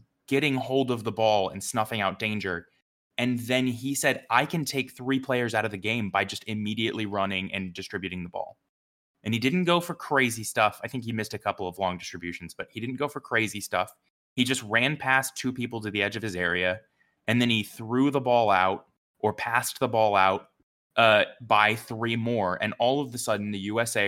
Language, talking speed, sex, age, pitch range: English, 220 wpm, male, 20-39, 95-115 Hz